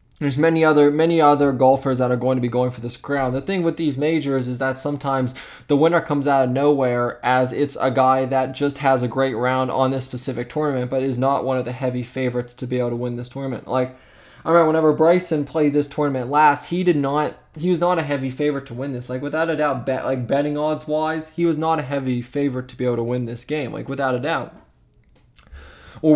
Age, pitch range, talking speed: 20-39, 125-150 Hz, 245 wpm